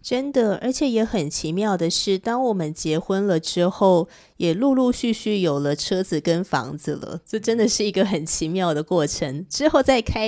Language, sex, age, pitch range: Chinese, female, 20-39, 155-200 Hz